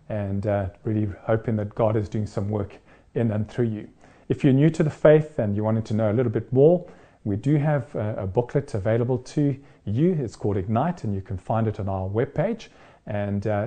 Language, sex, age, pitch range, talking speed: English, male, 40-59, 100-130 Hz, 225 wpm